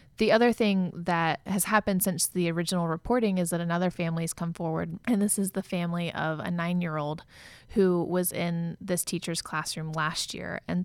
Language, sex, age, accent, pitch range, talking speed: English, female, 20-39, American, 165-185 Hz, 190 wpm